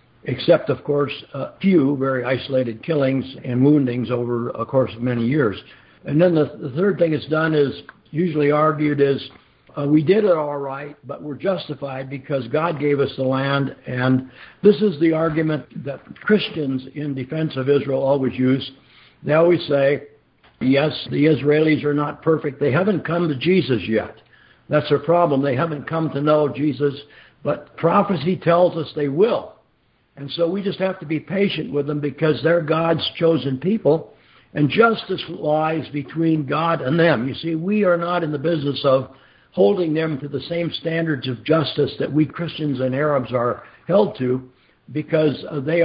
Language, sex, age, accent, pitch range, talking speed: English, male, 60-79, American, 135-165 Hz, 175 wpm